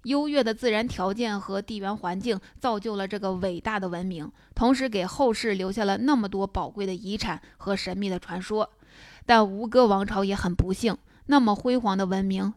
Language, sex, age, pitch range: Chinese, female, 20-39, 195-225 Hz